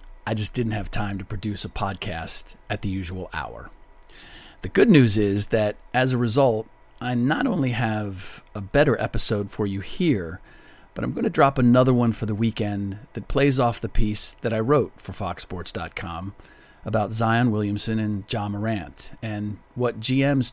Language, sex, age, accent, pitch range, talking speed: English, male, 40-59, American, 100-120 Hz, 175 wpm